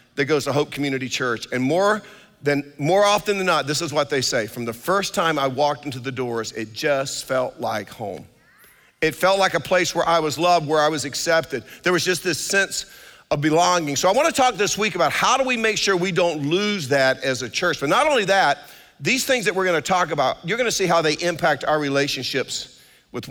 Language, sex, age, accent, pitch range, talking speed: English, male, 50-69, American, 145-170 Hz, 235 wpm